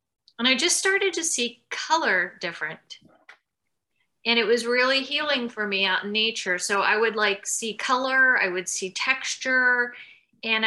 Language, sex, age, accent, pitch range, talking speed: English, female, 30-49, American, 205-255 Hz, 165 wpm